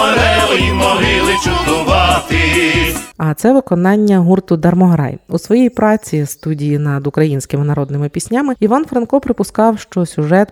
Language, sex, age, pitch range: Ukrainian, female, 30-49, 145-185 Hz